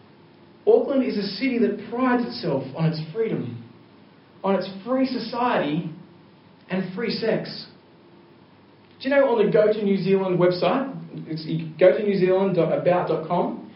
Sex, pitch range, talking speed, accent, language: male, 185-235 Hz, 135 wpm, Australian, English